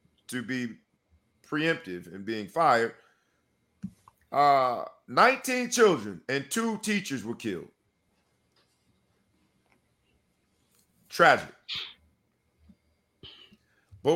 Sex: male